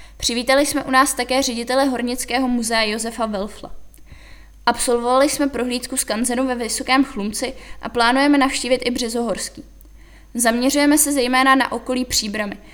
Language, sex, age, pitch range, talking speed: Czech, female, 20-39, 235-265 Hz, 130 wpm